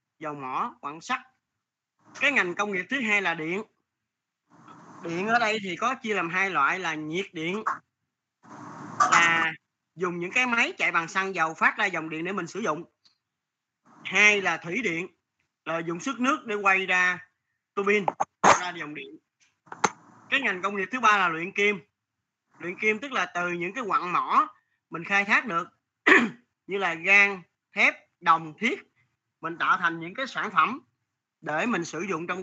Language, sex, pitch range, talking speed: Vietnamese, male, 170-210 Hz, 180 wpm